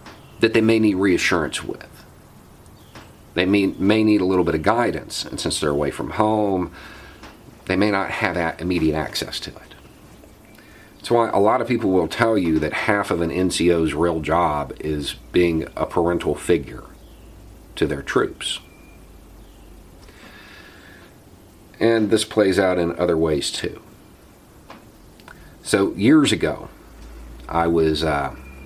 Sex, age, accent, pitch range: male, 40-59, American, 75-100 Hz